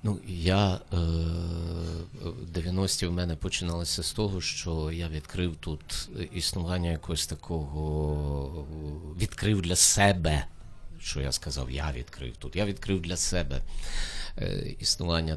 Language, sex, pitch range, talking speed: Ukrainian, male, 80-95 Hz, 120 wpm